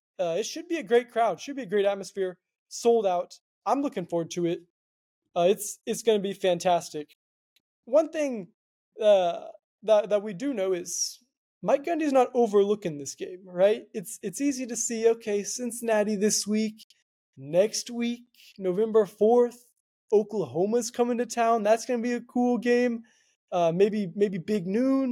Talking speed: 170 wpm